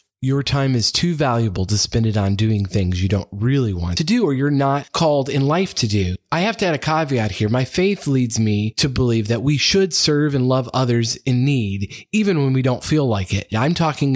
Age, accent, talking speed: 30-49, American, 235 wpm